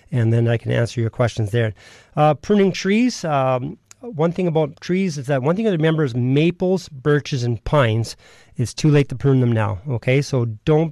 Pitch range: 120-145 Hz